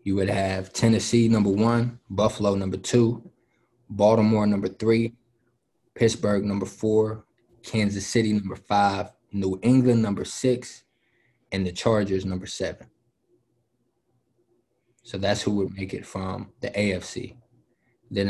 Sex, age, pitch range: male, 20-39, 95-110 Hz